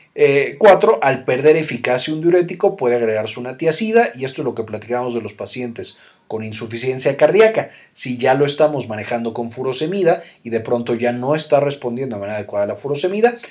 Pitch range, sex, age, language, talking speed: 115-165 Hz, male, 40-59, Spanish, 190 wpm